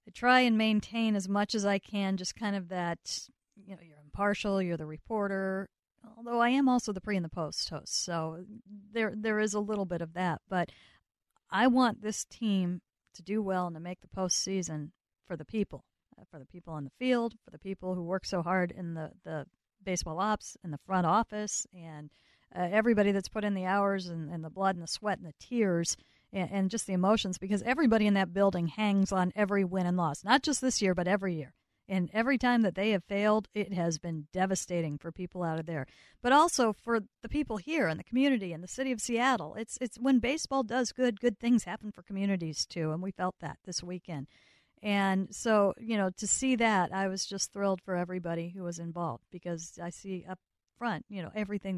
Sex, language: female, English